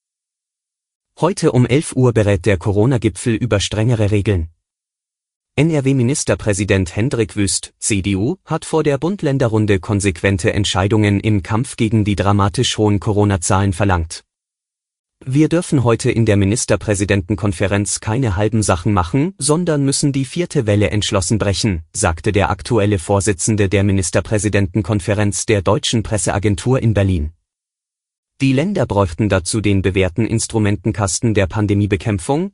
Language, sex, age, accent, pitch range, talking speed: German, male, 30-49, German, 100-120 Hz, 120 wpm